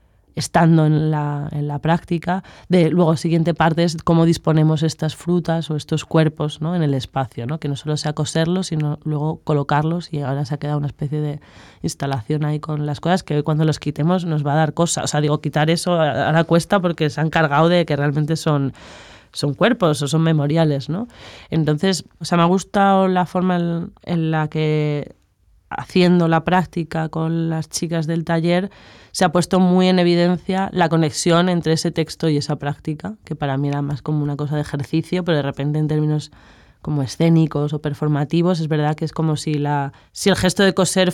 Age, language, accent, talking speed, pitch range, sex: 20-39, English, Spanish, 205 wpm, 150-170 Hz, female